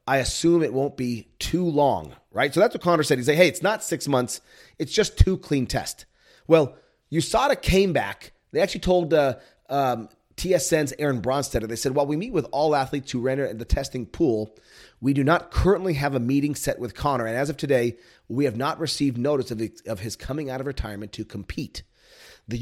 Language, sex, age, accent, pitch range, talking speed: English, male, 30-49, American, 115-150 Hz, 215 wpm